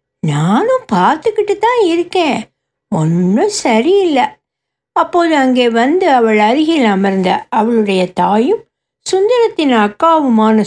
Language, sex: Tamil, female